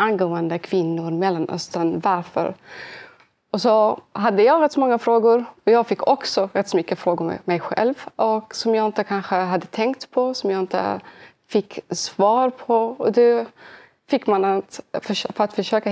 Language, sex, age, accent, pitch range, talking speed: Swedish, female, 30-49, native, 185-225 Hz, 175 wpm